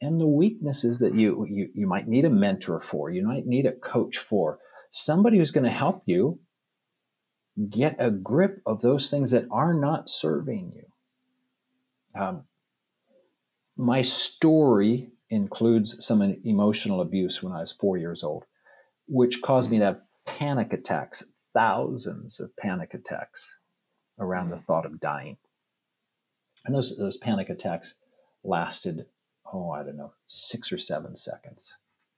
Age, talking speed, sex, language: 50-69, 145 wpm, male, English